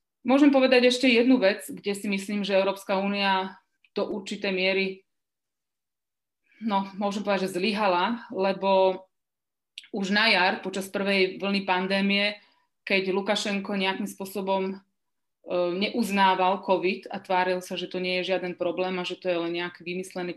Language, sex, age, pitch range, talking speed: Slovak, female, 30-49, 180-195 Hz, 145 wpm